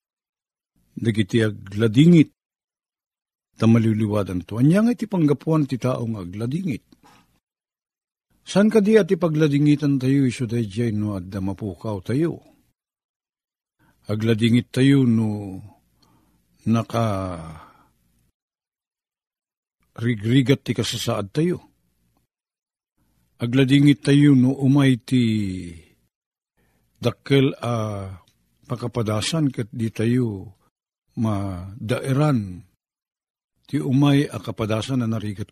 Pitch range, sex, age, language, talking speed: 105-150 Hz, male, 50-69, Filipino, 80 wpm